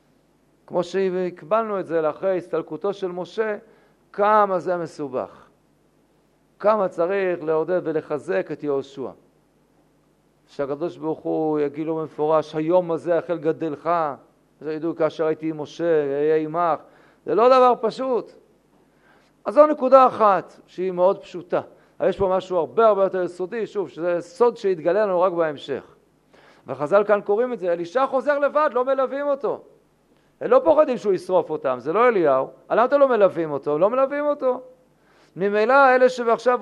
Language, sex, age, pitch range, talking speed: Hebrew, male, 50-69, 160-235 Hz, 145 wpm